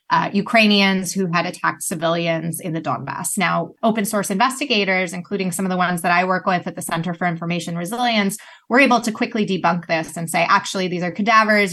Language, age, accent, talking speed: Polish, 20-39, American, 205 wpm